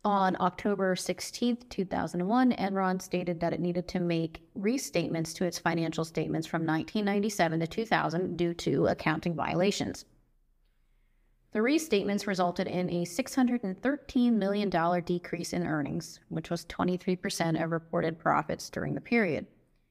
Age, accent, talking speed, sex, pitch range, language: 30-49, American, 130 wpm, female, 170-205 Hz, English